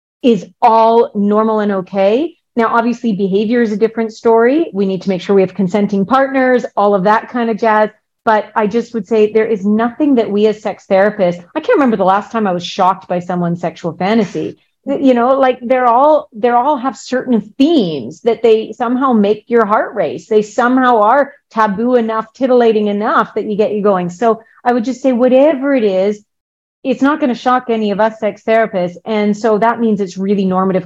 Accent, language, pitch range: American, English, 195-240 Hz